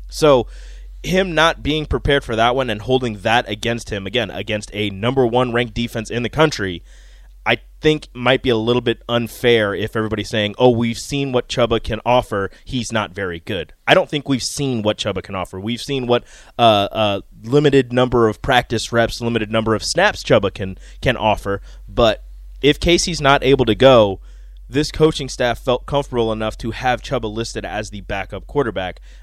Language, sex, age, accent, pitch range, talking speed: English, male, 20-39, American, 105-125 Hz, 195 wpm